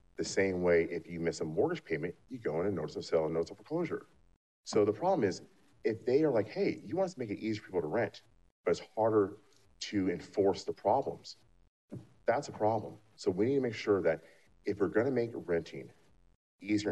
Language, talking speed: English, 225 wpm